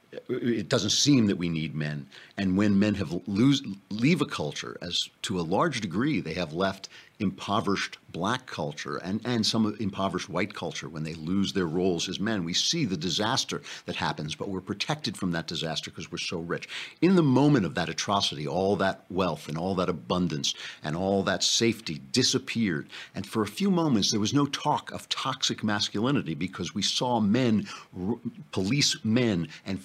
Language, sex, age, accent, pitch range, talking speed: English, male, 50-69, American, 90-115 Hz, 185 wpm